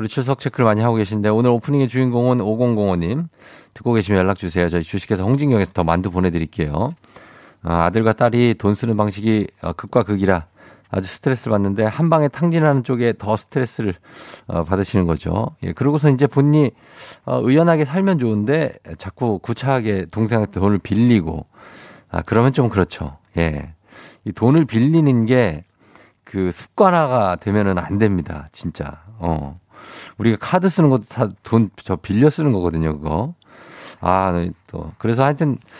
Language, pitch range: Korean, 95-130 Hz